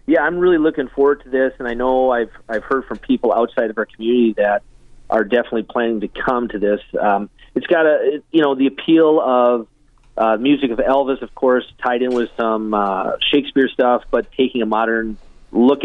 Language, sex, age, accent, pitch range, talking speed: English, male, 30-49, American, 115-130 Hz, 205 wpm